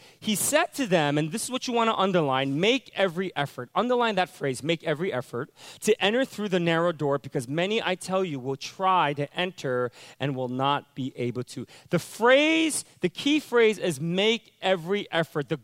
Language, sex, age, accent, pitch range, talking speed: English, male, 30-49, American, 140-215 Hz, 200 wpm